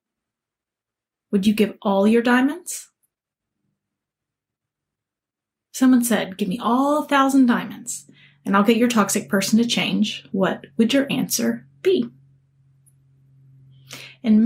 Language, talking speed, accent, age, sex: English, 115 wpm, American, 30-49, female